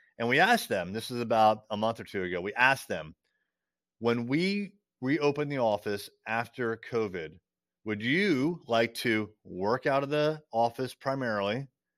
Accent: American